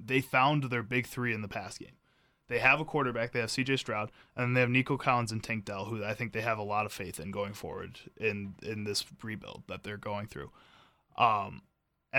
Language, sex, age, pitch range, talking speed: English, male, 20-39, 115-130 Hz, 230 wpm